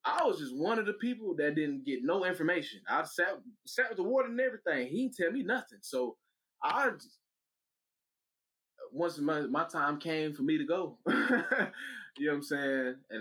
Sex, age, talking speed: male, 20-39, 195 wpm